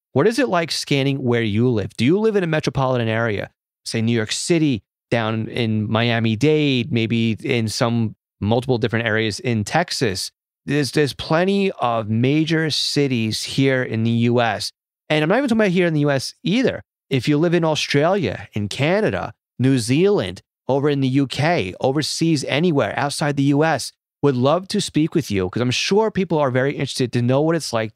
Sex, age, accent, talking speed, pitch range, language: male, 30-49, American, 185 wpm, 110-155 Hz, English